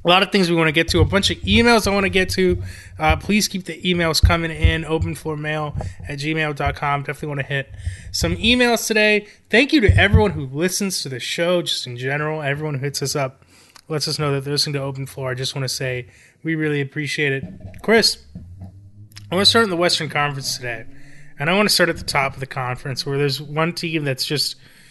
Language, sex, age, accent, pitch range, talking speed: English, male, 20-39, American, 140-180 Hz, 230 wpm